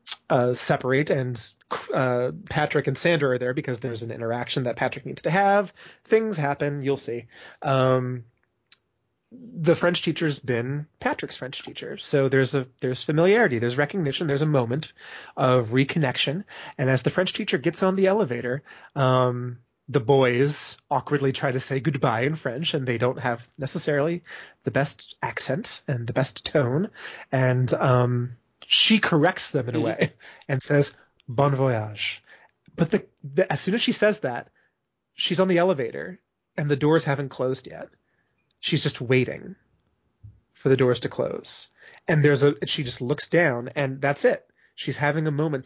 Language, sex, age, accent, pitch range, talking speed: English, male, 20-39, American, 125-160 Hz, 165 wpm